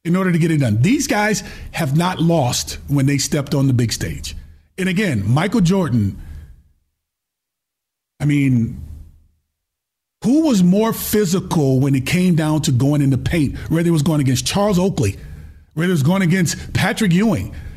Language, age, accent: English, 30-49, American